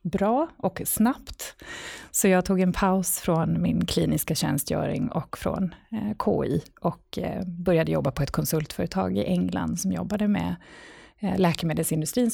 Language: Swedish